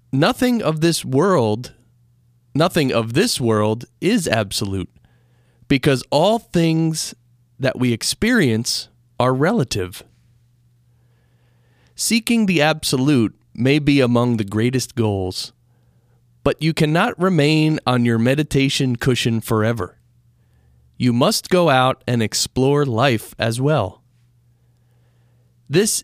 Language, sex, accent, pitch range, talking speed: English, male, American, 120-150 Hz, 105 wpm